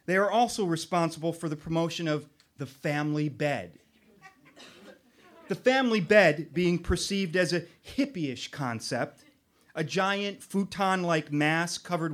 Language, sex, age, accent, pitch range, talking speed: English, male, 30-49, American, 160-195 Hz, 125 wpm